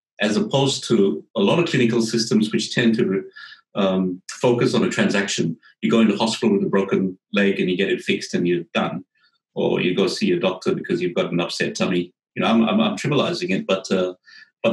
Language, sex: English, male